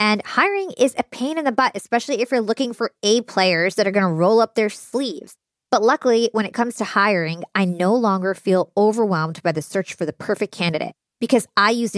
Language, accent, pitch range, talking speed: English, American, 180-235 Hz, 225 wpm